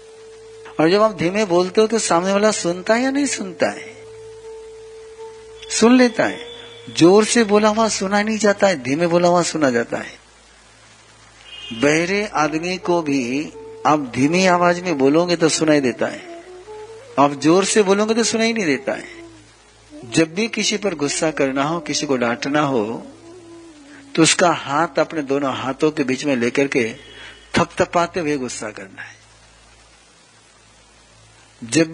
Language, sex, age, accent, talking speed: Hindi, male, 60-79, native, 155 wpm